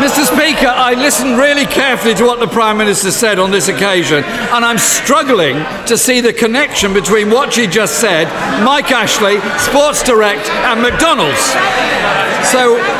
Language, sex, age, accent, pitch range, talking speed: English, male, 50-69, British, 175-235 Hz, 155 wpm